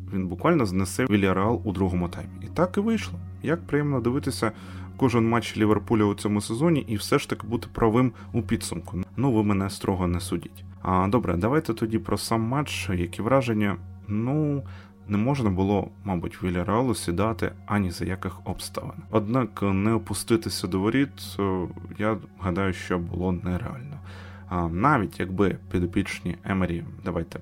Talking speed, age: 160 wpm, 20-39